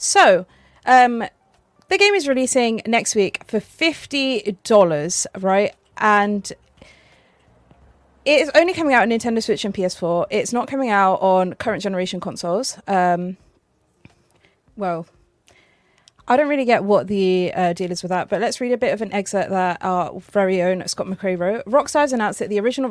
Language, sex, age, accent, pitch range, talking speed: English, female, 30-49, British, 185-220 Hz, 165 wpm